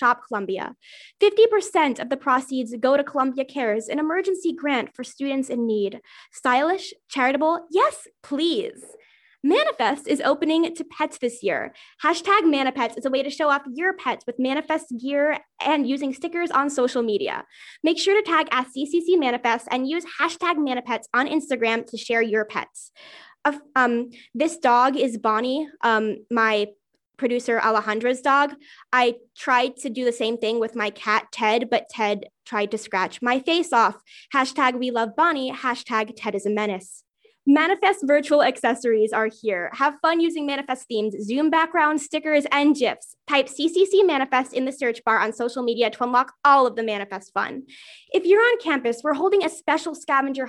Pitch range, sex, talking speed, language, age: 235-315 Hz, female, 170 wpm, English, 10-29